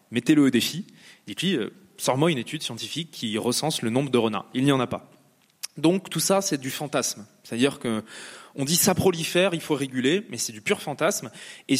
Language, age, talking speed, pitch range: French, 20-39, 210 wpm, 125-175 Hz